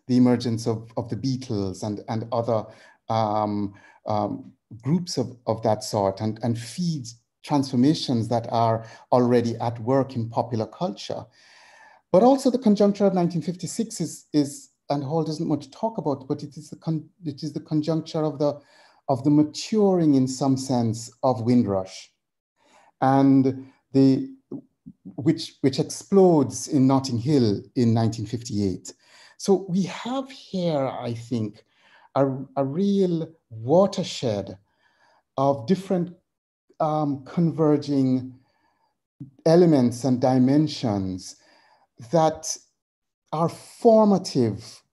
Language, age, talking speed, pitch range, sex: English, 50-69, 125 wpm, 115-160 Hz, male